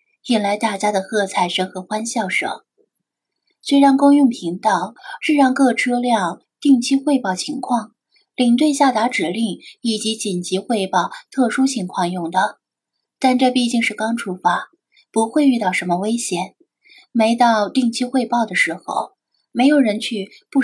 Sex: female